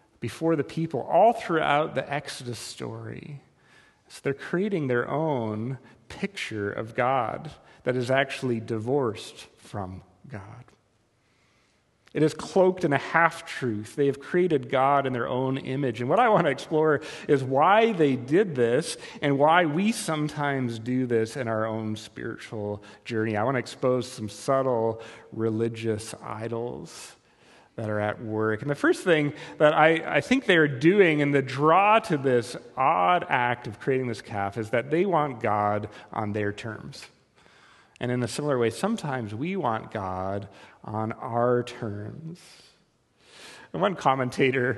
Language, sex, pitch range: English, male, 115-155 Hz